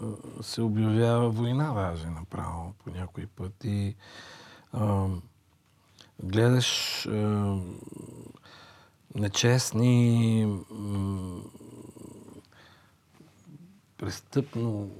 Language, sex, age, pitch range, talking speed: Bulgarian, male, 50-69, 95-115 Hz, 50 wpm